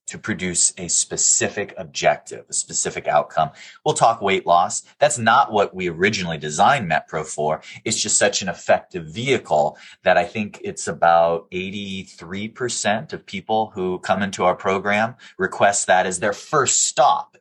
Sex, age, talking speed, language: male, 30-49, 155 wpm, English